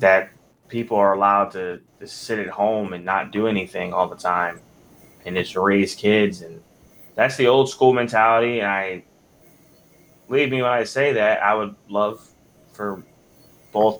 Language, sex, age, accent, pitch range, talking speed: English, male, 20-39, American, 95-115 Hz, 165 wpm